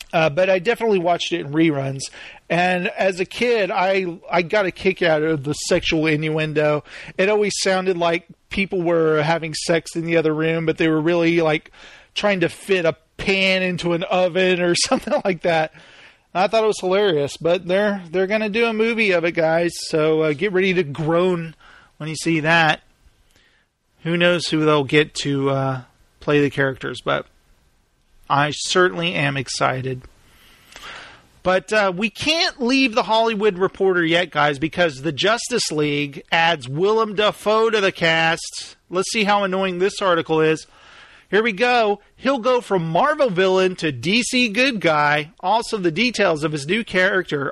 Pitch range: 160-205 Hz